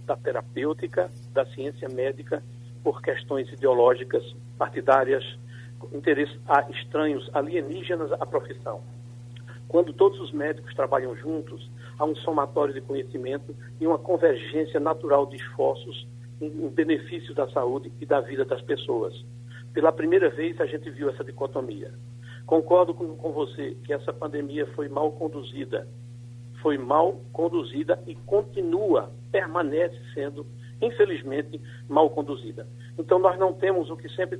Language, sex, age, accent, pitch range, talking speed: Portuguese, male, 60-79, Brazilian, 120-155 Hz, 135 wpm